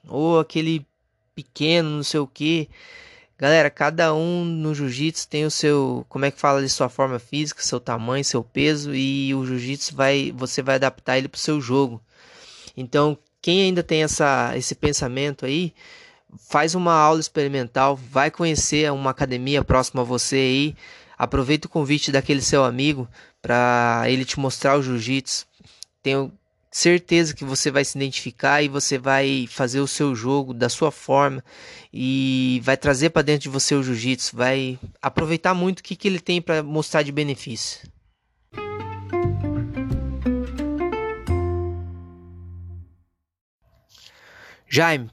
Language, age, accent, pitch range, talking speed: Portuguese, 20-39, Brazilian, 130-155 Hz, 145 wpm